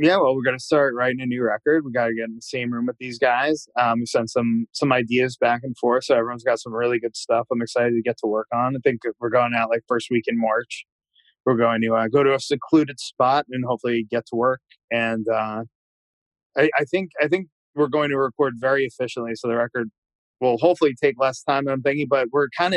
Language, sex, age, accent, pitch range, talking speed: English, male, 20-39, American, 115-145 Hz, 250 wpm